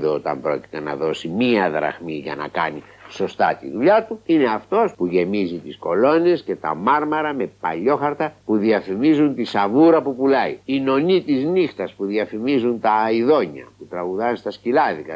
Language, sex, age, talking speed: Greek, male, 60-79, 165 wpm